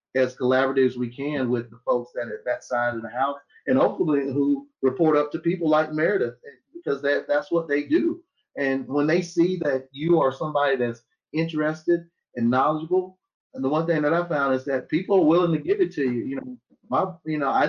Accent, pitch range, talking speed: American, 130-170 Hz, 220 wpm